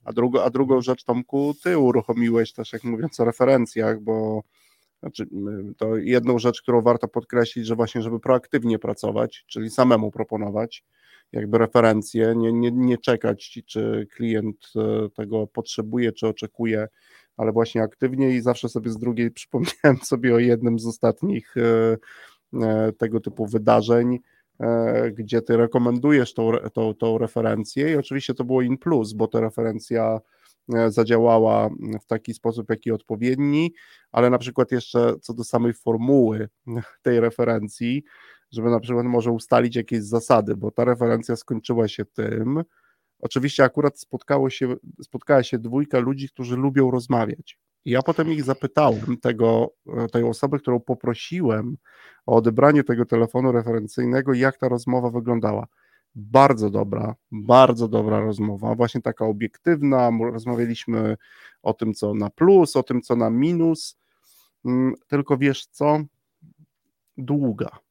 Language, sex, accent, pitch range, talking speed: Polish, male, native, 115-130 Hz, 135 wpm